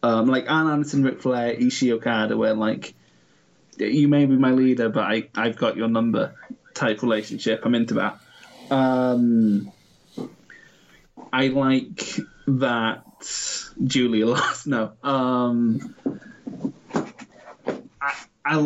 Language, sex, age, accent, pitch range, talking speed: English, male, 20-39, British, 115-140 Hz, 115 wpm